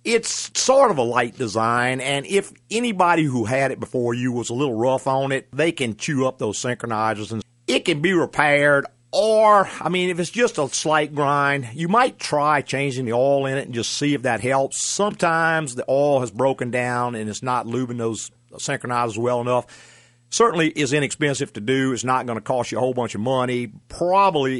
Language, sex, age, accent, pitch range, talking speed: English, male, 50-69, American, 120-150 Hz, 205 wpm